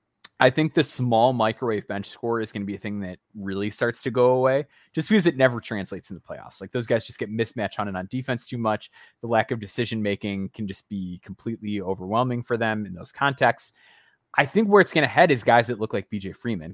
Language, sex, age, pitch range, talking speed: English, male, 20-39, 105-130 Hz, 240 wpm